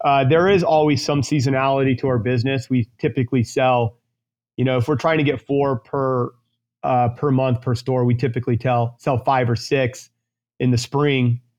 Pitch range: 120-135 Hz